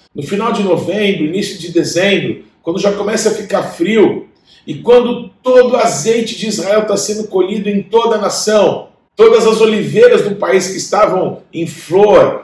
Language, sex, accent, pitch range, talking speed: Portuguese, male, Brazilian, 170-210 Hz, 175 wpm